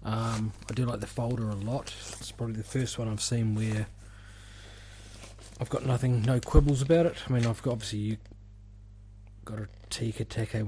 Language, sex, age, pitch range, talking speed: English, male, 20-39, 100-110 Hz, 180 wpm